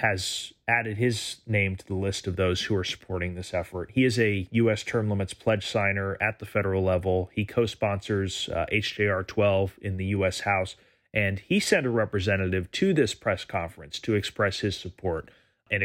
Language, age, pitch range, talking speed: English, 30-49, 95-125 Hz, 180 wpm